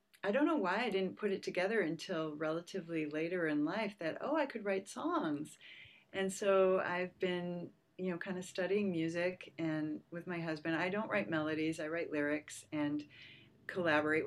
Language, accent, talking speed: English, American, 180 wpm